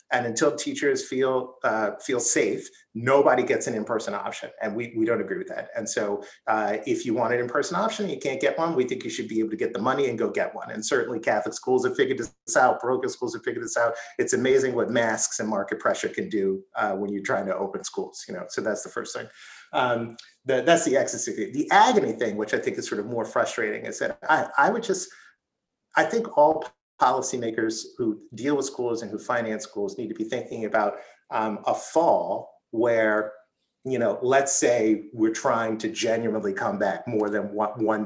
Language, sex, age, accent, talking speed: English, male, 30-49, American, 220 wpm